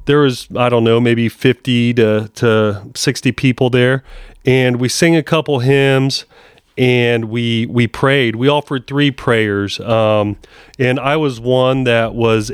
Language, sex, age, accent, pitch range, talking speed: English, male, 40-59, American, 115-145 Hz, 160 wpm